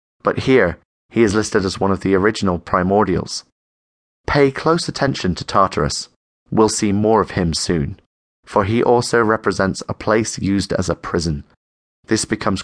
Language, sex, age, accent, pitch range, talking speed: English, male, 30-49, British, 95-120 Hz, 160 wpm